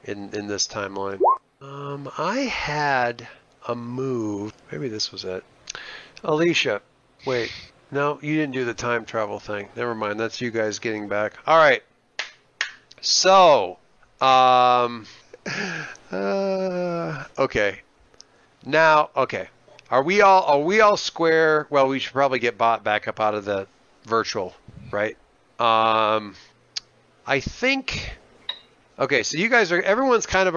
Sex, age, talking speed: male, 40-59, 135 wpm